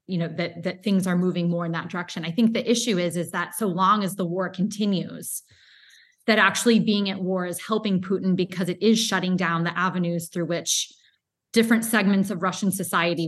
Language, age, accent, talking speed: English, 20-39, American, 210 wpm